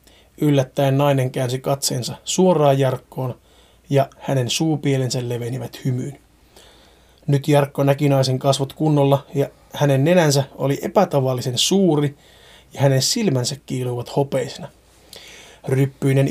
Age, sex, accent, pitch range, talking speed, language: 30-49, male, native, 135-160 Hz, 105 wpm, Finnish